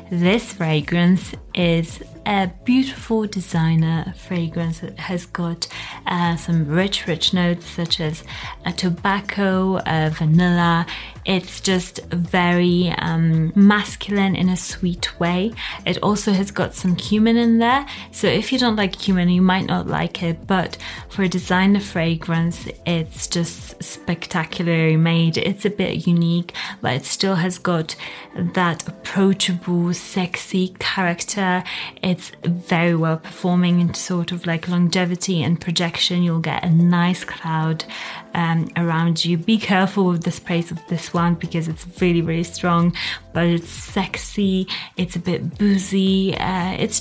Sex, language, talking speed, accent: female, English, 140 wpm, British